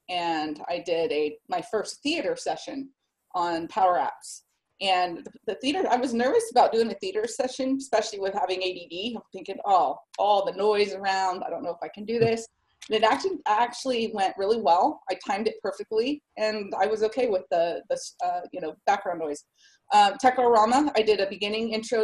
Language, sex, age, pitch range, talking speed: English, female, 30-49, 190-250 Hz, 200 wpm